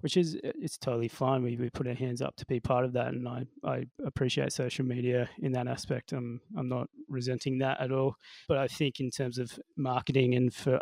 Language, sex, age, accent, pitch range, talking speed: English, male, 20-39, Australian, 120-135 Hz, 235 wpm